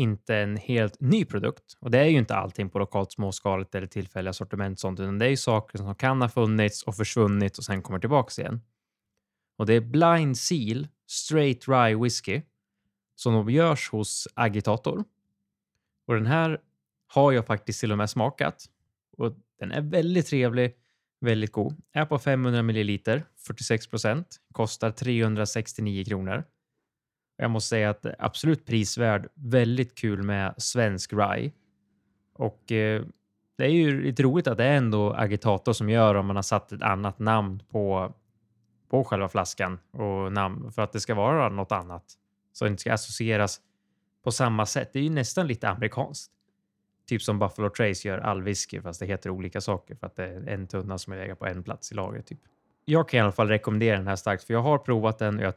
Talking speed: 190 wpm